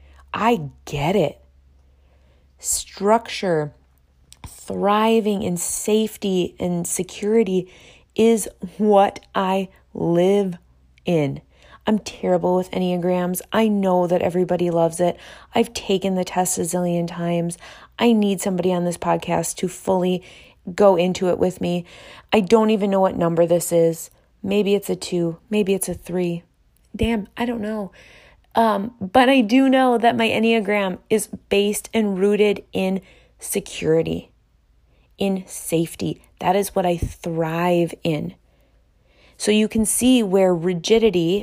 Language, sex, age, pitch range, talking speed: English, female, 20-39, 170-205 Hz, 135 wpm